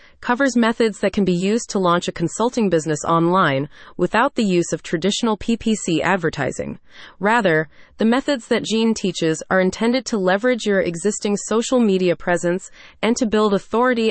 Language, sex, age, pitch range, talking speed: English, female, 30-49, 170-230 Hz, 160 wpm